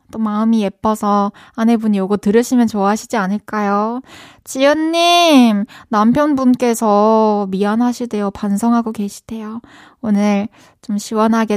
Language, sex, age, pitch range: Korean, female, 20-39, 205-275 Hz